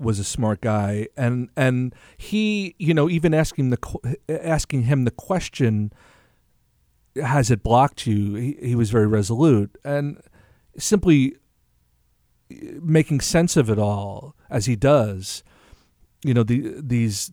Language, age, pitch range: English, 40-59, 105-135 Hz